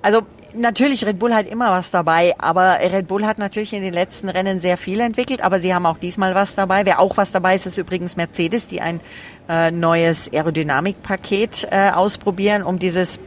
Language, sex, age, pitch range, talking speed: German, female, 40-59, 165-190 Hz, 195 wpm